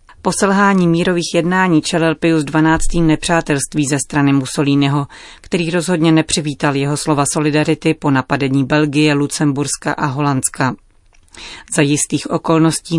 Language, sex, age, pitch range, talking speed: Czech, female, 30-49, 150-170 Hz, 115 wpm